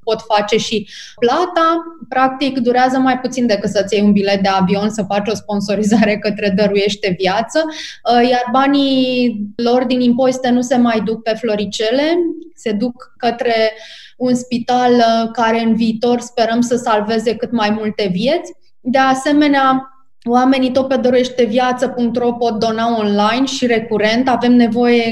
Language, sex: Romanian, female